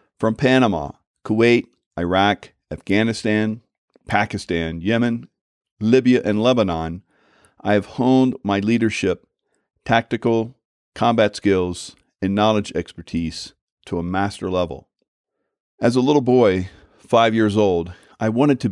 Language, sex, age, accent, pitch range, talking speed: English, male, 50-69, American, 90-110 Hz, 110 wpm